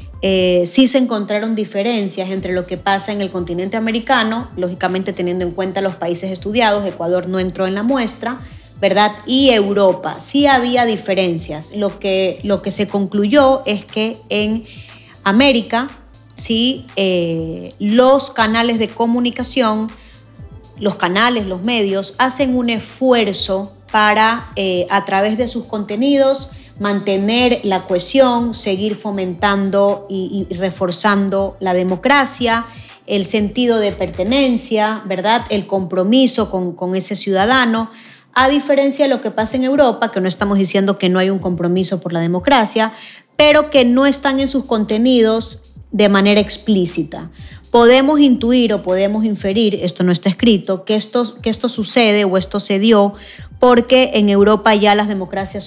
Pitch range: 190-235 Hz